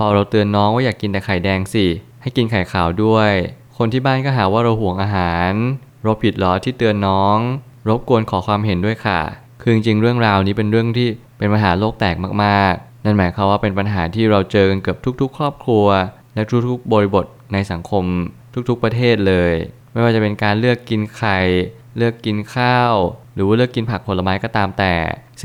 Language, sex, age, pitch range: Thai, male, 20-39, 95-115 Hz